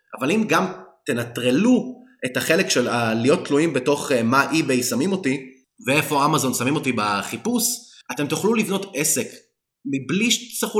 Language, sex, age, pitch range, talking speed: Hebrew, male, 20-39, 125-190 Hz, 150 wpm